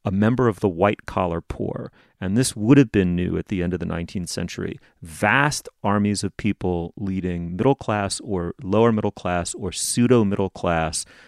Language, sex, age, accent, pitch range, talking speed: English, male, 30-49, American, 90-110 Hz, 180 wpm